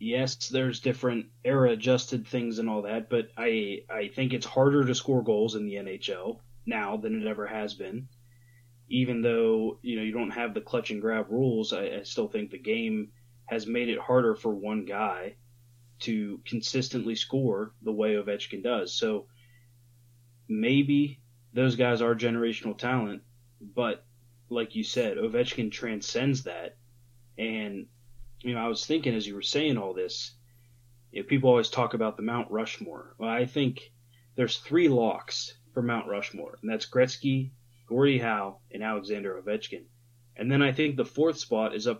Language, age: English, 20-39